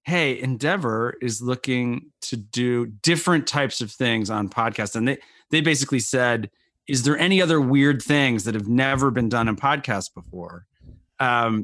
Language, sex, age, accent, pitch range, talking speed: English, male, 30-49, American, 115-150 Hz, 165 wpm